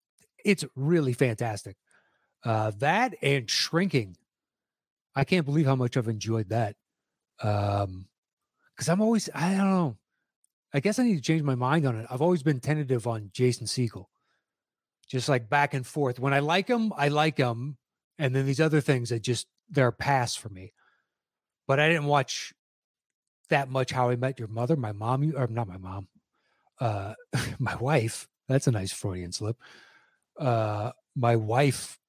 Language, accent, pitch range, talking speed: English, American, 115-145 Hz, 165 wpm